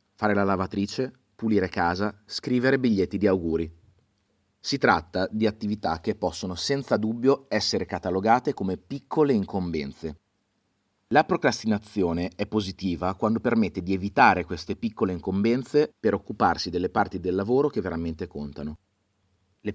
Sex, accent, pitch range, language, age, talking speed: male, native, 90-110 Hz, Italian, 30-49, 130 wpm